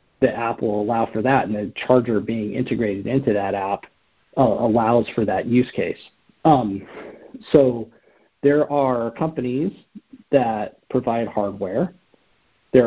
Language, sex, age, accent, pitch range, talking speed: English, male, 40-59, American, 105-135 Hz, 135 wpm